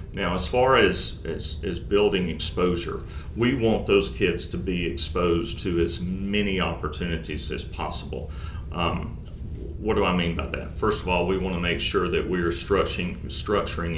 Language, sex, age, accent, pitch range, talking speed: English, male, 40-59, American, 80-95 Hz, 170 wpm